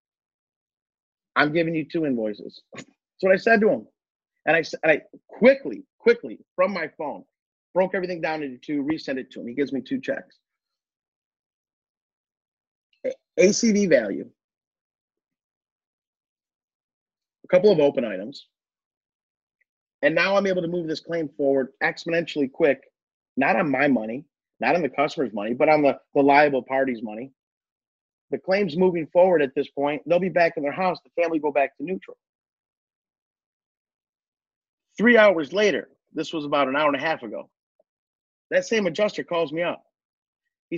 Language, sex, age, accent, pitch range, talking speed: English, male, 40-59, American, 145-195 Hz, 155 wpm